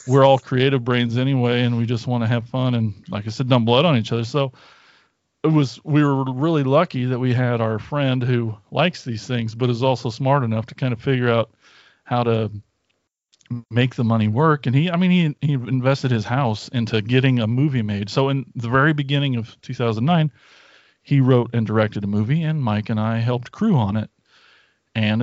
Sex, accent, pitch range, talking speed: male, American, 120-150 Hz, 210 wpm